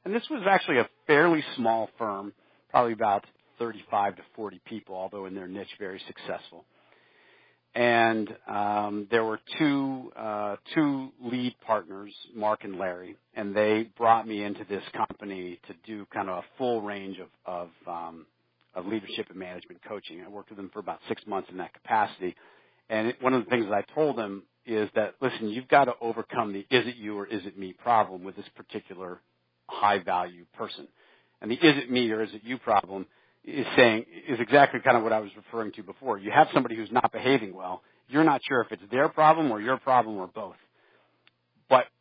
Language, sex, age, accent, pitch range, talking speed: English, male, 50-69, American, 100-125 Hz, 200 wpm